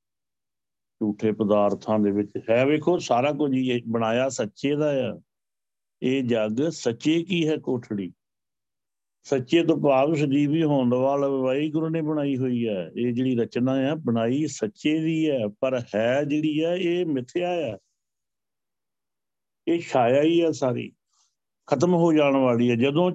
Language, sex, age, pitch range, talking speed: Punjabi, male, 60-79, 120-160 Hz, 125 wpm